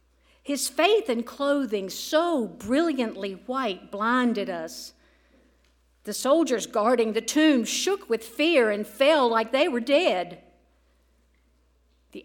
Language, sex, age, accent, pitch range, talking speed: English, female, 50-69, American, 175-275 Hz, 120 wpm